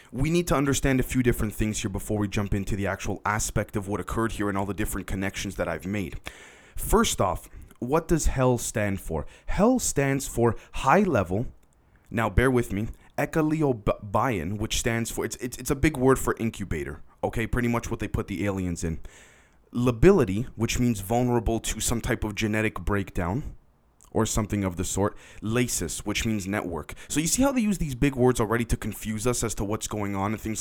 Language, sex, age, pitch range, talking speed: English, male, 20-39, 105-130 Hz, 205 wpm